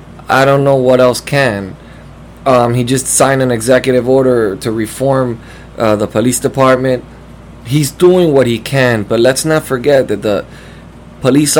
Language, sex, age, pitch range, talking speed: English, male, 20-39, 115-135 Hz, 160 wpm